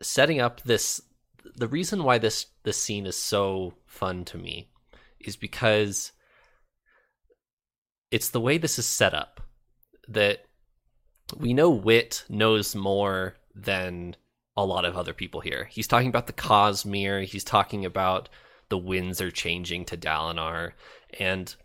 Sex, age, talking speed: male, 20-39, 140 wpm